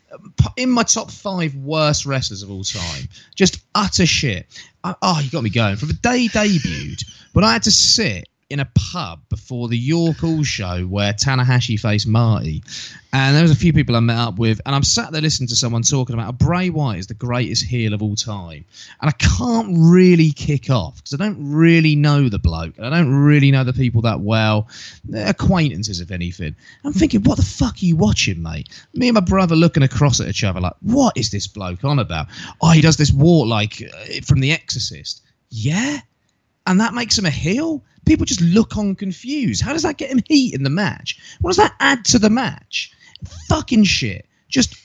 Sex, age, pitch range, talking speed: male, 20-39, 110-180 Hz, 215 wpm